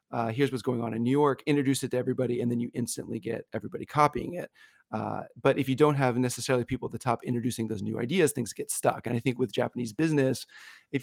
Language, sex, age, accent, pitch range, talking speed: English, male, 40-59, American, 115-135 Hz, 245 wpm